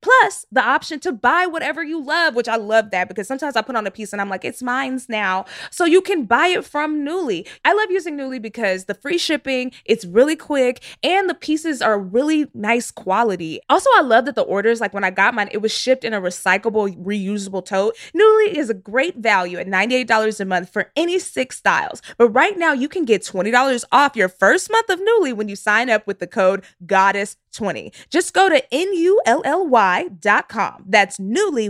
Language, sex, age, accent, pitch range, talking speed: English, female, 20-39, American, 205-320 Hz, 215 wpm